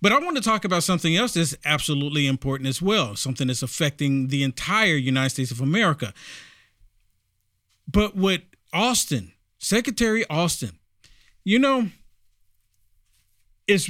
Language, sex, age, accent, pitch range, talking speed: English, male, 50-69, American, 125-180 Hz, 130 wpm